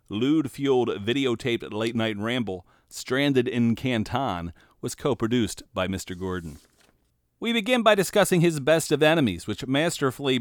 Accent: American